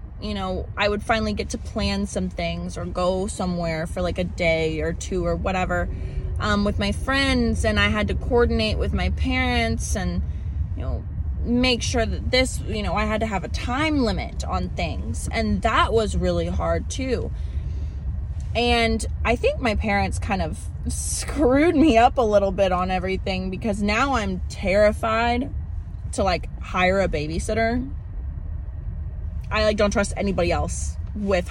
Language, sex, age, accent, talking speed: English, female, 20-39, American, 170 wpm